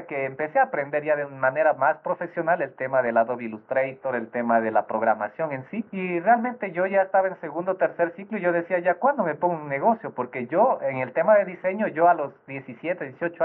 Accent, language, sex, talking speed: Mexican, Spanish, male, 230 wpm